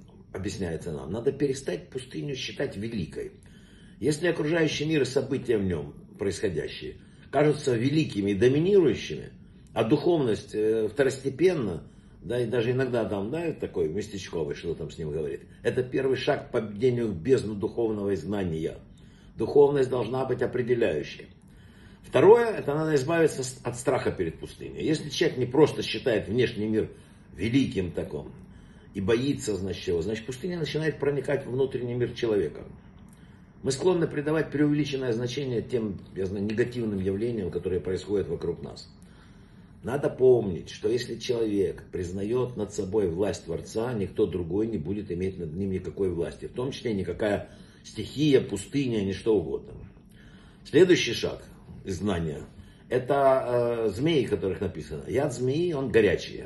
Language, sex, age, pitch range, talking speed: Russian, male, 60-79, 105-145 Hz, 140 wpm